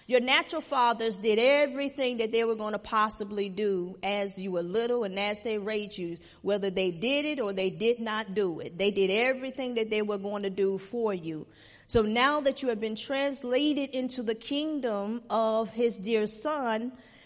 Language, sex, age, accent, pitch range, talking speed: English, female, 40-59, American, 200-245 Hz, 195 wpm